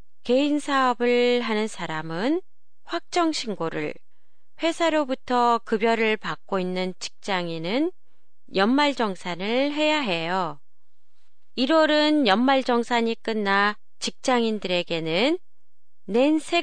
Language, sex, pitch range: Japanese, female, 195-275 Hz